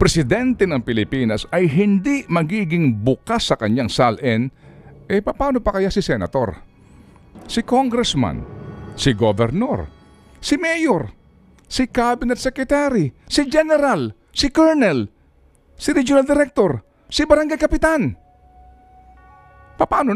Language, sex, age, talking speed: Filipino, male, 50-69, 110 wpm